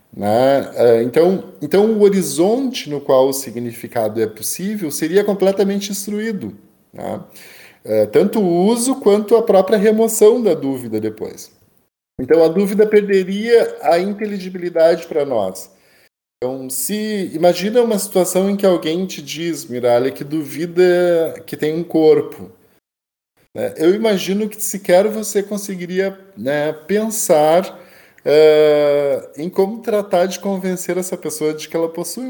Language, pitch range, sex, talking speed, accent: Portuguese, 140-210 Hz, male, 130 wpm, Brazilian